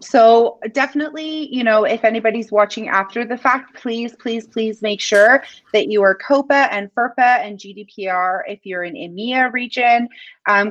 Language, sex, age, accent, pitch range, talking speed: English, female, 30-49, American, 205-255 Hz, 165 wpm